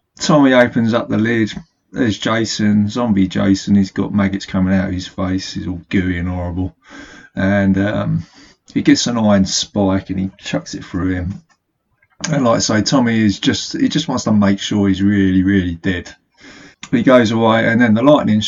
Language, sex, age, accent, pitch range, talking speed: English, male, 30-49, British, 95-115 Hz, 190 wpm